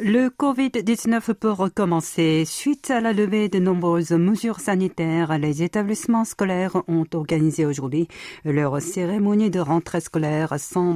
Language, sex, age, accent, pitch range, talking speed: French, female, 50-69, French, 140-175 Hz, 130 wpm